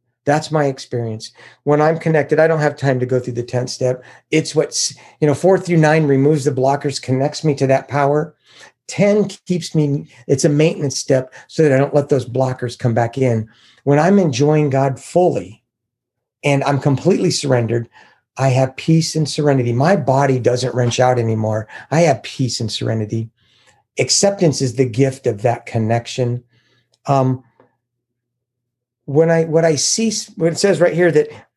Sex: male